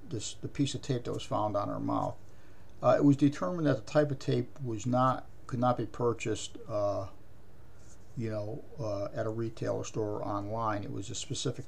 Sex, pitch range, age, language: male, 105-130 Hz, 50-69, English